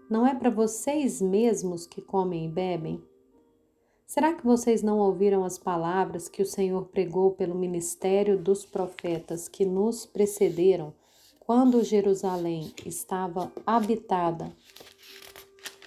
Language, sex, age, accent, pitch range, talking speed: Portuguese, female, 30-49, Brazilian, 185-225 Hz, 115 wpm